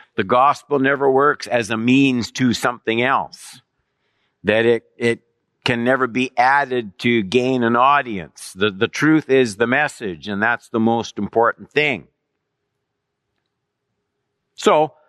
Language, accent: English, American